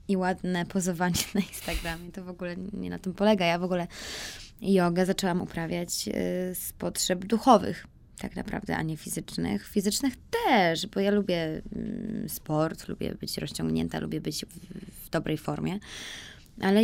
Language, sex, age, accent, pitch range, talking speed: Polish, female, 20-39, native, 170-215 Hz, 145 wpm